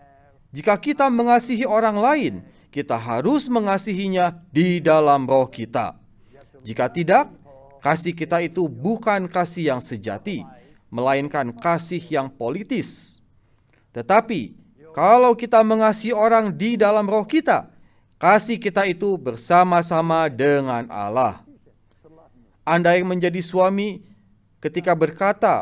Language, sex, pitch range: Indonesian, male, 130-210 Hz